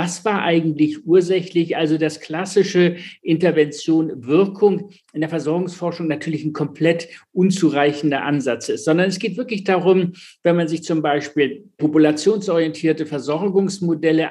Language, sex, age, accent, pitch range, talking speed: German, male, 60-79, German, 160-190 Hz, 125 wpm